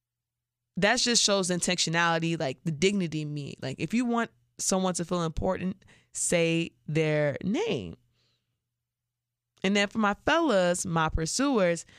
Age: 20-39